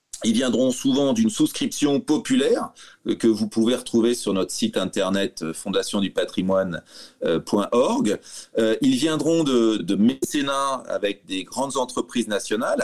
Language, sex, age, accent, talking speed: French, male, 30-49, French, 115 wpm